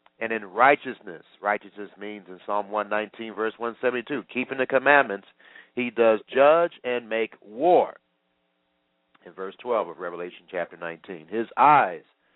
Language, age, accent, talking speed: English, 50-69, American, 135 wpm